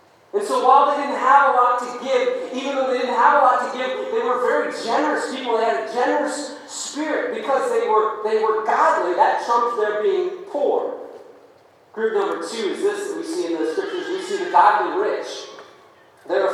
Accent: American